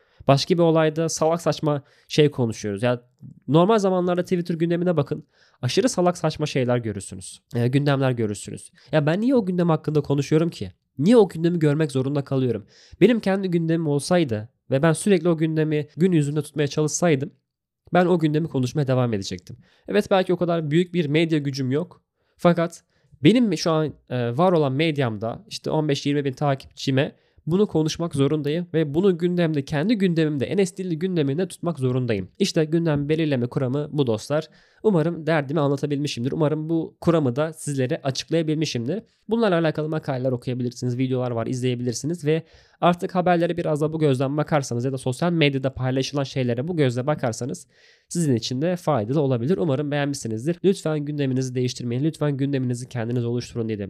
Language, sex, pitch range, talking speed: Turkish, male, 130-165 Hz, 155 wpm